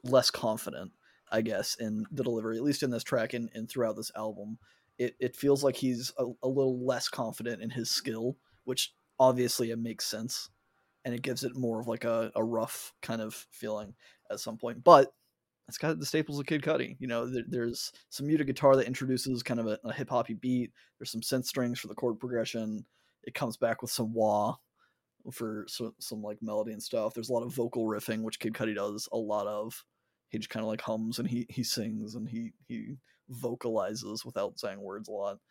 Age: 20-39